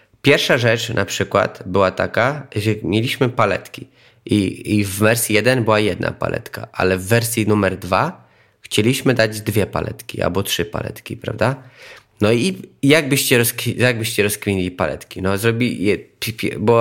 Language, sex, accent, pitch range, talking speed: Polish, male, native, 105-125 Hz, 150 wpm